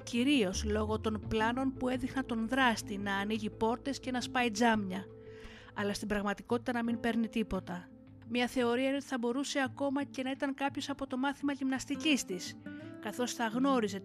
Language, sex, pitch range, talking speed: Greek, female, 200-265 Hz, 175 wpm